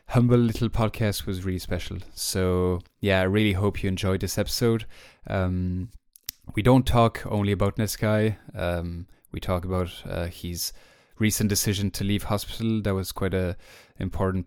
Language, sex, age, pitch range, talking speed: English, male, 10-29, 90-105 Hz, 160 wpm